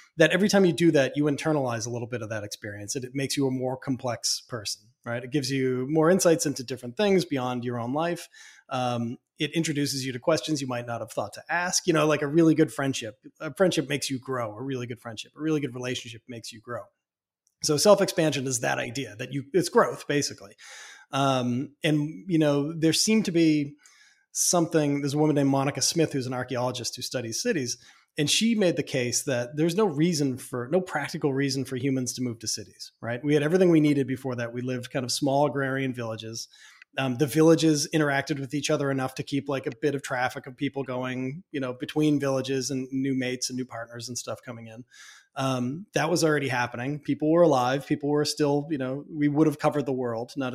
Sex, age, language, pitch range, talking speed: male, 30-49, English, 125-155 Hz, 225 wpm